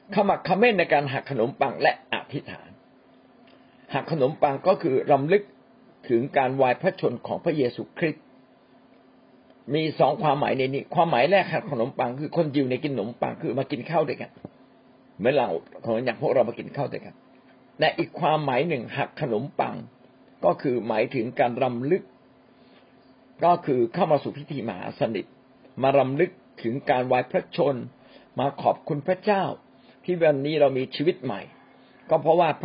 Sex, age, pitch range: male, 60-79, 130-170 Hz